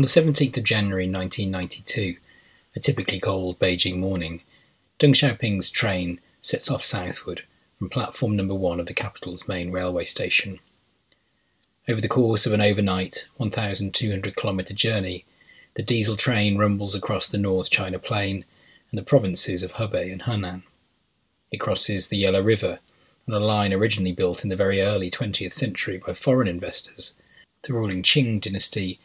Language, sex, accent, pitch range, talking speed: English, male, British, 95-115 Hz, 155 wpm